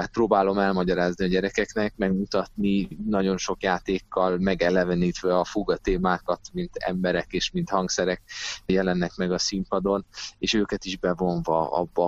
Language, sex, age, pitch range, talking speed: Hungarian, male, 30-49, 90-100 Hz, 130 wpm